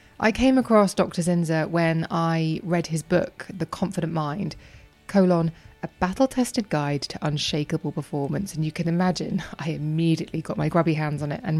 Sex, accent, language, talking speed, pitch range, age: female, British, English, 170 wpm, 155-190 Hz, 20-39